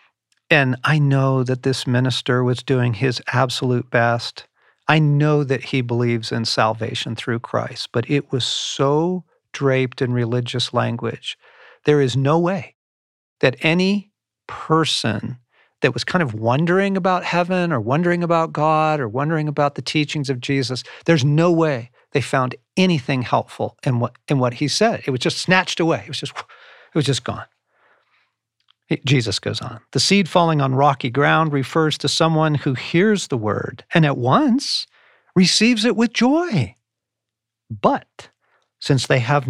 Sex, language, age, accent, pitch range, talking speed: male, English, 50-69, American, 120-155 Hz, 160 wpm